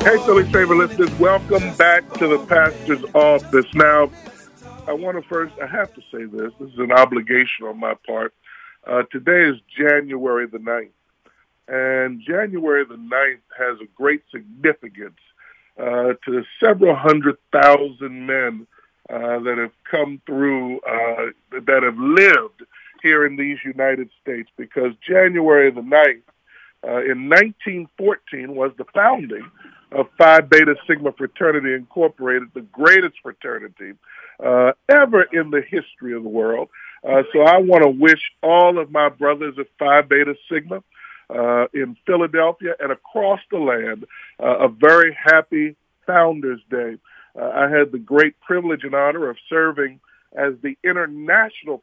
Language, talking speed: English, 150 wpm